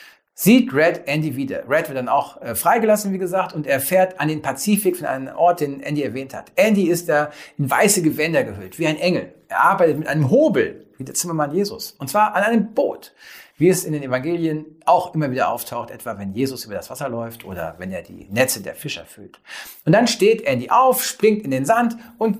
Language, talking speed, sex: German, 220 wpm, male